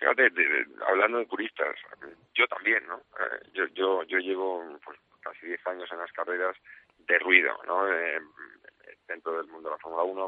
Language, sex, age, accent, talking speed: Spanish, male, 40-59, Spanish, 170 wpm